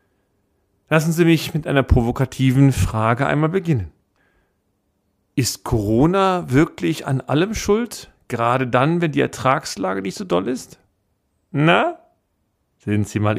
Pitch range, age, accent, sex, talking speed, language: 110-160 Hz, 40-59, German, male, 125 wpm, German